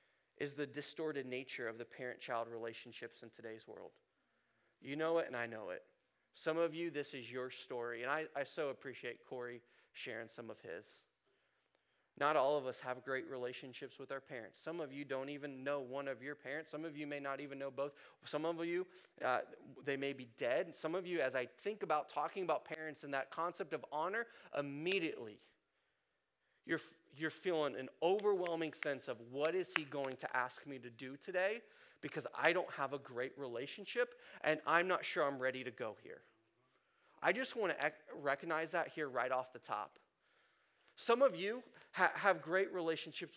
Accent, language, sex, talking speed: American, English, male, 190 wpm